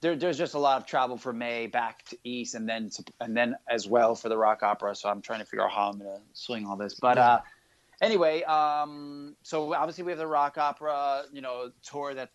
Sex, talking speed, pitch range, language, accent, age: male, 250 wpm, 115-135 Hz, English, American, 30-49